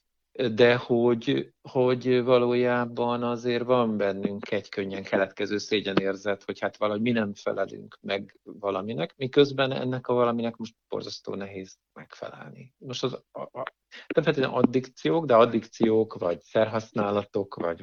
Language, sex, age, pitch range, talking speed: Hungarian, male, 50-69, 105-120 Hz, 120 wpm